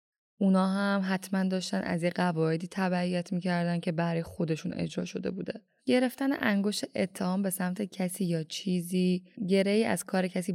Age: 10-29